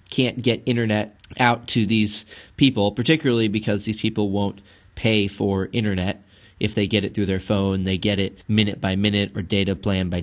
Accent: American